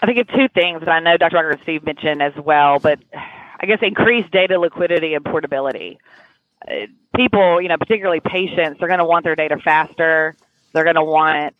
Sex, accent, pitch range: female, American, 155-175 Hz